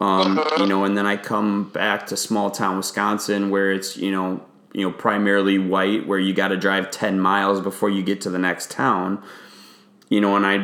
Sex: male